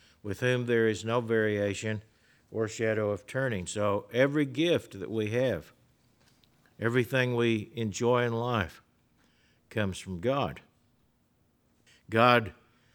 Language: English